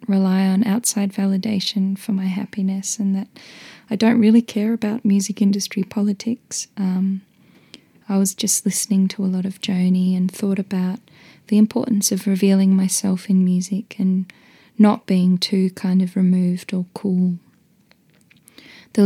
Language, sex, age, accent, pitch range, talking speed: English, female, 10-29, Australian, 190-215 Hz, 150 wpm